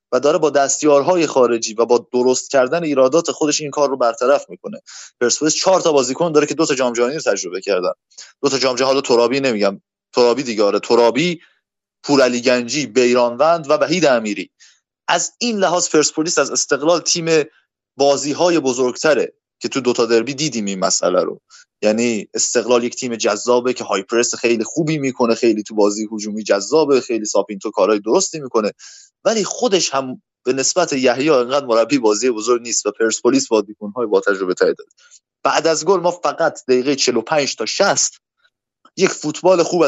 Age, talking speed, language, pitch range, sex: 20-39, 170 wpm, Persian, 120-170 Hz, male